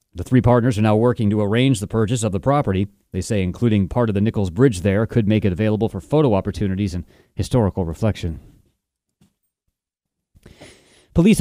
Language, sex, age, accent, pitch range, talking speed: English, male, 30-49, American, 105-125 Hz, 175 wpm